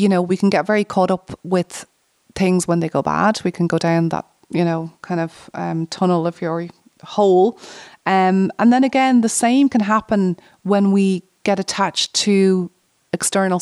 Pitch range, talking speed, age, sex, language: 175-205 Hz, 185 wpm, 30-49, female, English